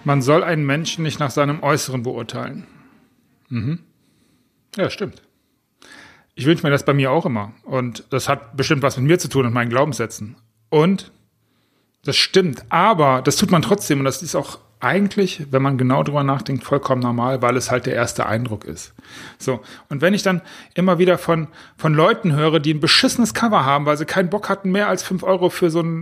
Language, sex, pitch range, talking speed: German, male, 120-170 Hz, 200 wpm